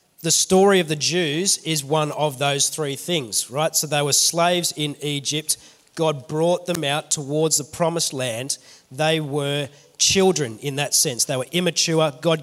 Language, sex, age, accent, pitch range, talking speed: English, male, 30-49, Australian, 150-175 Hz, 175 wpm